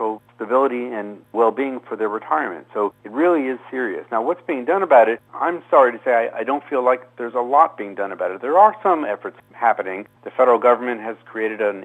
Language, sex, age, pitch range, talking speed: English, male, 50-69, 105-125 Hz, 230 wpm